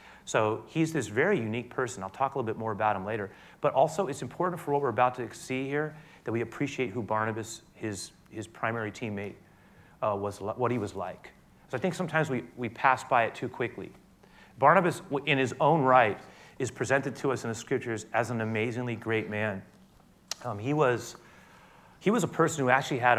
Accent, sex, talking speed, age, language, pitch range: American, male, 205 wpm, 30-49, English, 110-130 Hz